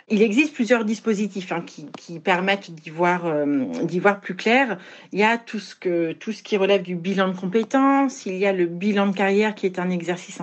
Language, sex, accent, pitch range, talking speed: French, female, French, 190-230 Hz, 230 wpm